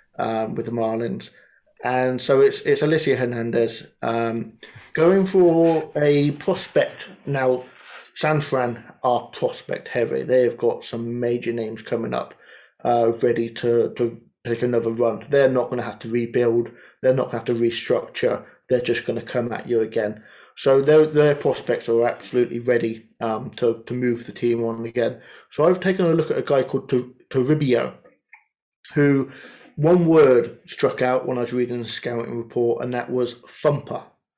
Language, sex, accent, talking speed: English, male, British, 170 wpm